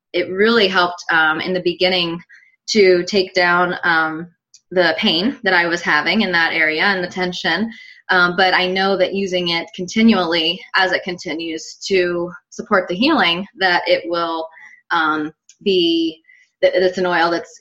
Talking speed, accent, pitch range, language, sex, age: 165 wpm, American, 160-190 Hz, English, female, 20-39